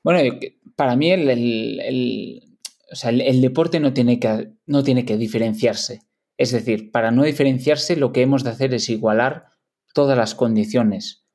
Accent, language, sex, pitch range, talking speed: Spanish, French, male, 115-145 Hz, 175 wpm